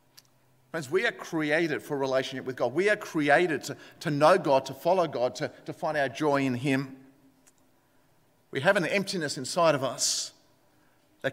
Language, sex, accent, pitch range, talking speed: English, male, Australian, 145-215 Hz, 175 wpm